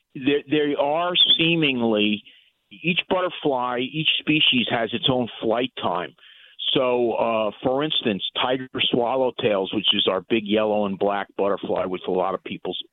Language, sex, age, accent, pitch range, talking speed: English, male, 50-69, American, 110-135 Hz, 145 wpm